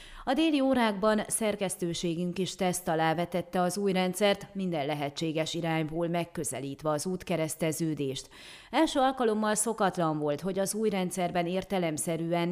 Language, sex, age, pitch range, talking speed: Hungarian, female, 30-49, 165-215 Hz, 125 wpm